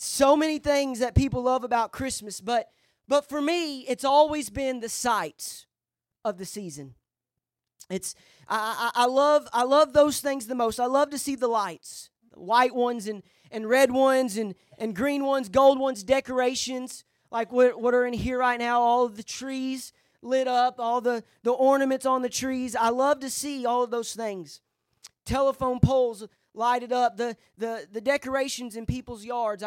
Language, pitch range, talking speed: English, 230-265 Hz, 185 wpm